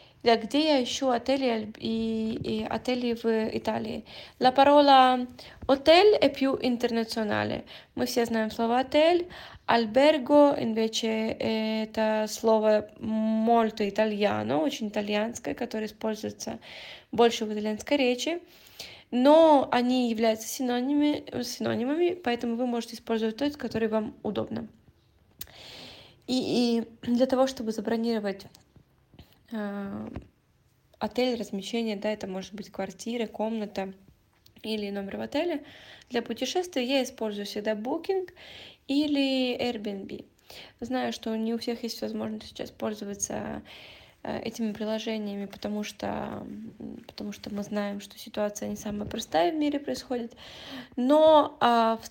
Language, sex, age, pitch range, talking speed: Italian, female, 20-39, 215-255 Hz, 115 wpm